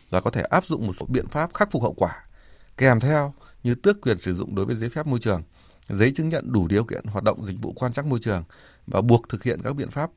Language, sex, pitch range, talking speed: Vietnamese, male, 95-130 Hz, 275 wpm